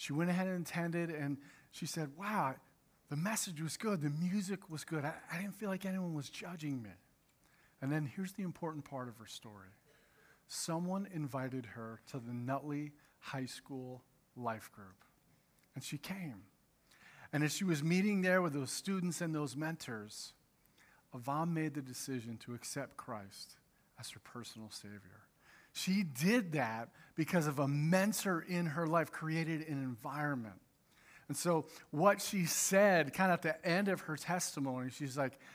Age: 40-59